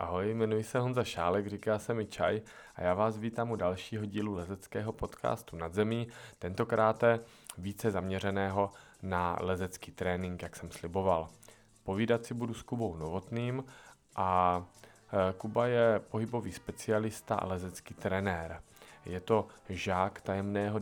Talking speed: 140 wpm